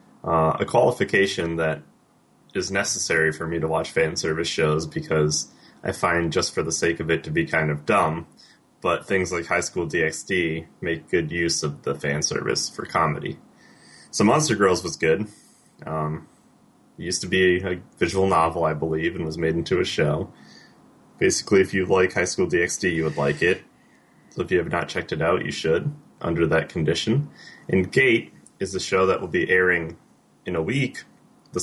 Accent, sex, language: American, male, English